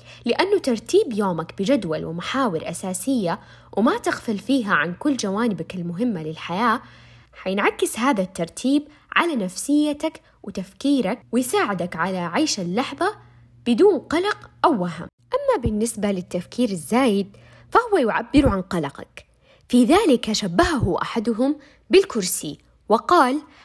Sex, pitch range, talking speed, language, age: female, 185-285 Hz, 105 wpm, Arabic, 20-39